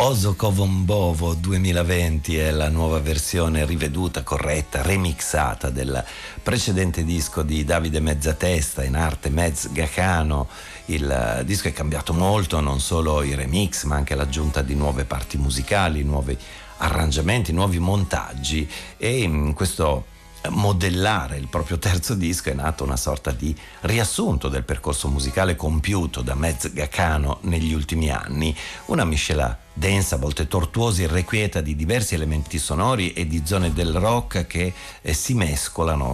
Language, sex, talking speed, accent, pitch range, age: Italian, male, 140 wpm, native, 75-95 Hz, 50-69